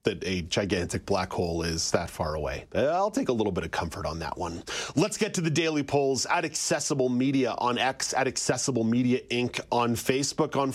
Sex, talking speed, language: male, 205 wpm, English